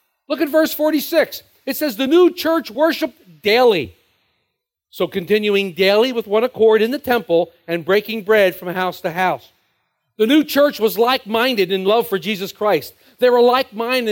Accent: American